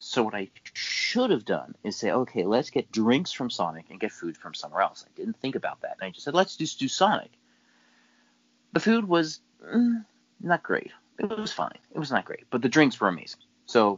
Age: 30-49